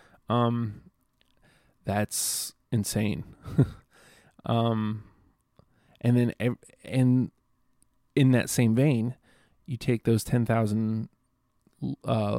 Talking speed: 75 wpm